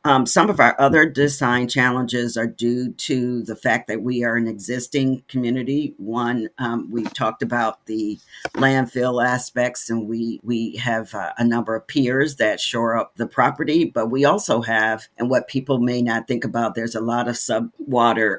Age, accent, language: 50-69, American, English